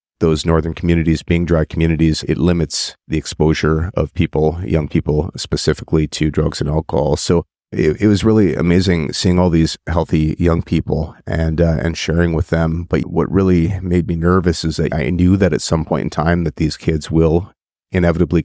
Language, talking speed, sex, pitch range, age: English, 190 wpm, male, 80-85 Hz, 30-49